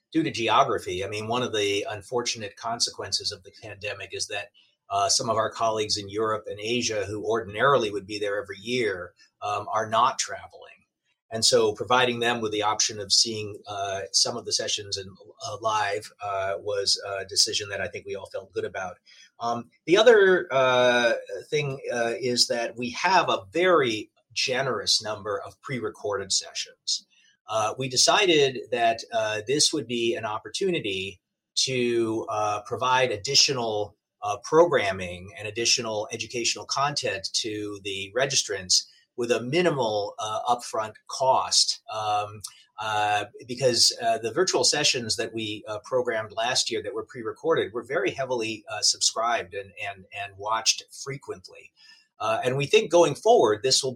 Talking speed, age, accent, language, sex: 160 wpm, 30-49, American, English, male